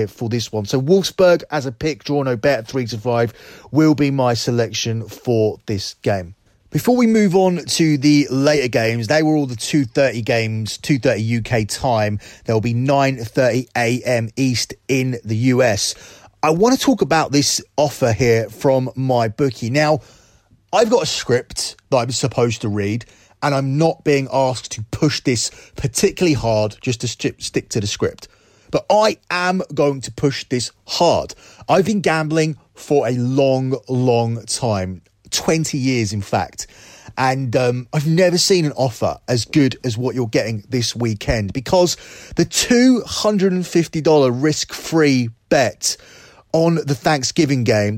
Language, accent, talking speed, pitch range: English, British, 160 wpm, 115-155 Hz